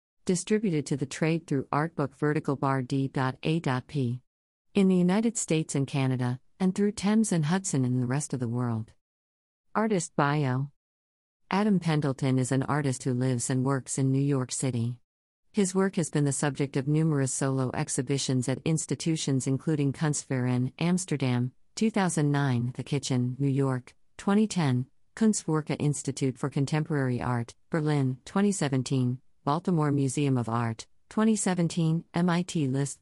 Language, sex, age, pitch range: English, female, 50-69, 130-165 Hz